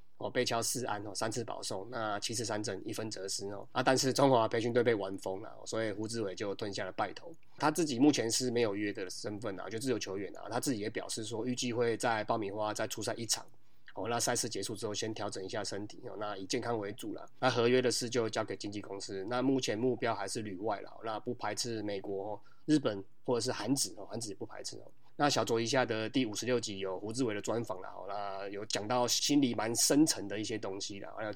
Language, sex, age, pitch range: Chinese, male, 20-39, 105-125 Hz